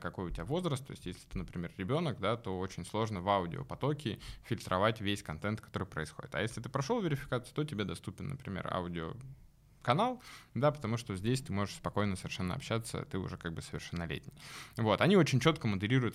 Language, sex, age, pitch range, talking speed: Russian, male, 20-39, 95-130 Hz, 190 wpm